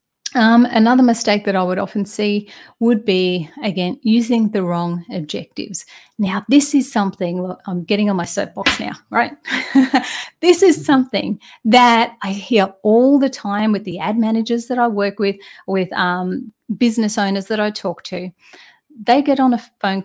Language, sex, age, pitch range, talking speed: English, female, 30-49, 195-255 Hz, 170 wpm